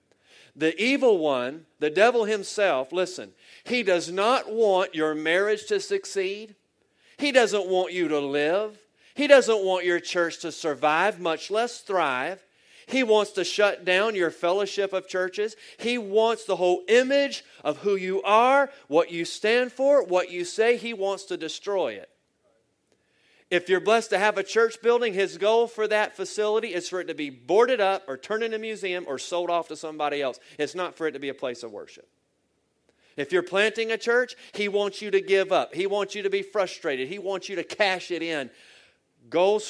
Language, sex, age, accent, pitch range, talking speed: English, male, 40-59, American, 170-225 Hz, 190 wpm